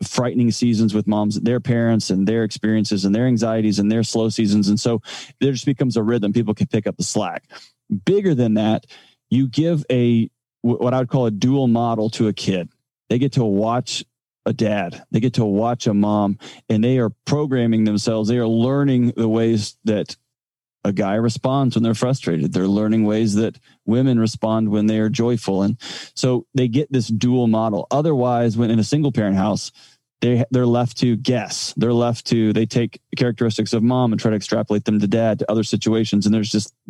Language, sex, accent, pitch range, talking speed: English, male, American, 110-125 Hz, 200 wpm